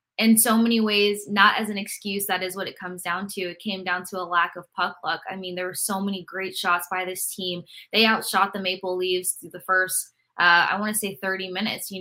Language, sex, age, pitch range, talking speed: English, female, 20-39, 180-205 Hz, 255 wpm